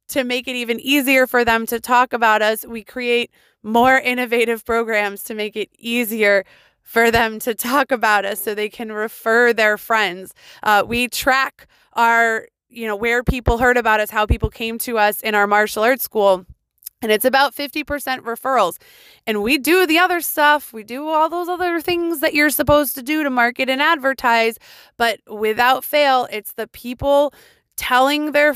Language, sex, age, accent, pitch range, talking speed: English, female, 20-39, American, 215-260 Hz, 185 wpm